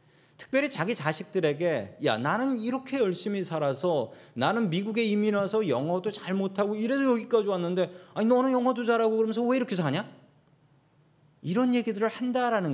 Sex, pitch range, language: male, 150-220 Hz, Korean